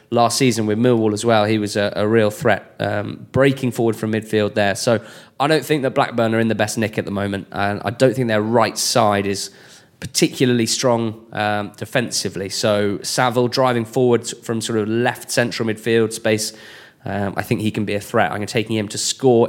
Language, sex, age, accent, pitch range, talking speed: English, male, 20-39, British, 105-125 Hz, 210 wpm